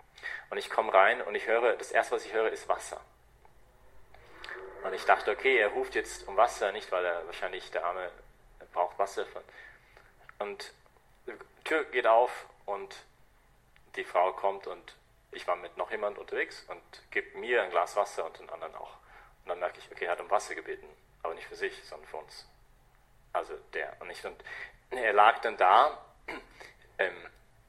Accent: German